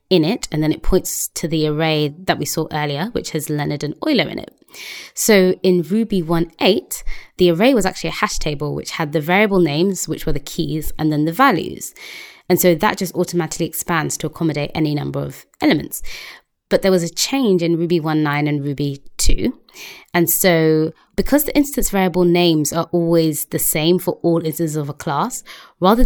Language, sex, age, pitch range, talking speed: English, female, 20-39, 155-185 Hz, 195 wpm